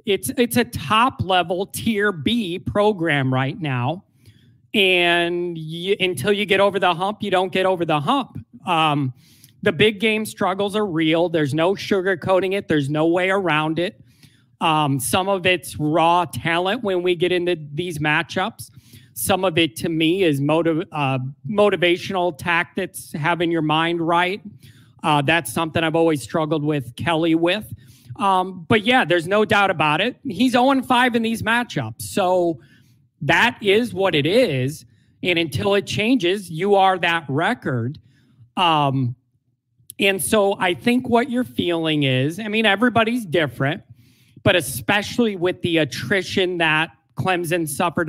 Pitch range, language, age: 150-205 Hz, English, 30-49